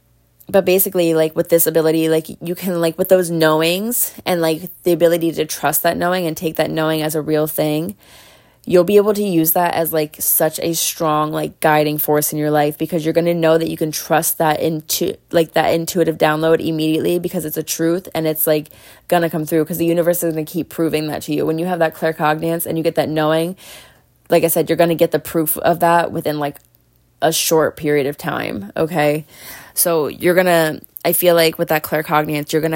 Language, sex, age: English, female, 20-39